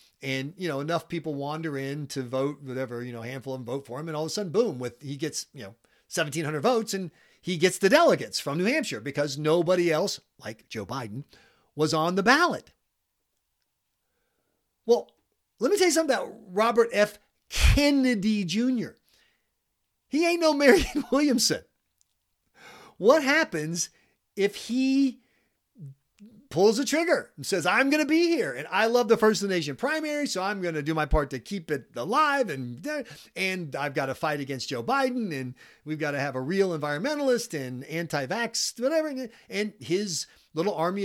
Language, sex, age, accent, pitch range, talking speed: English, male, 40-59, American, 150-245 Hz, 180 wpm